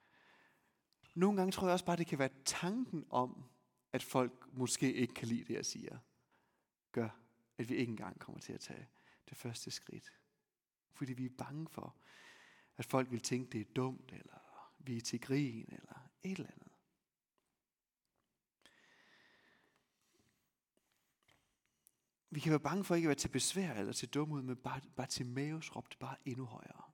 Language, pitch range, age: Danish, 125-180 Hz, 30-49